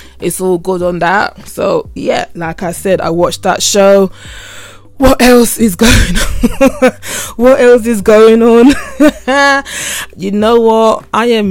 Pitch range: 170-225 Hz